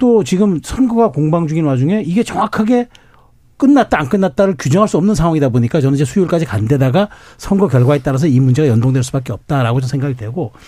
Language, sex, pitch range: Korean, male, 130-185 Hz